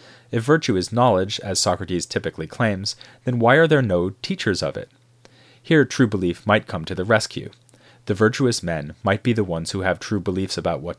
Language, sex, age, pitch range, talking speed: English, male, 30-49, 90-125 Hz, 200 wpm